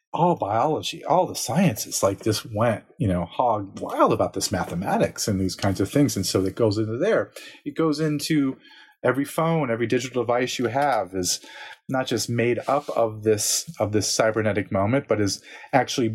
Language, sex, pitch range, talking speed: English, male, 105-140 Hz, 185 wpm